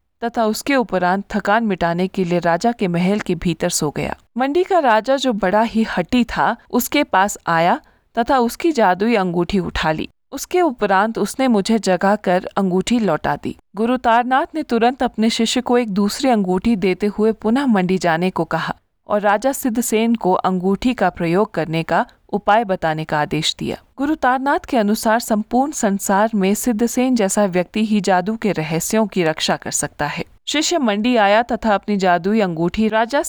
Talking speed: 175 wpm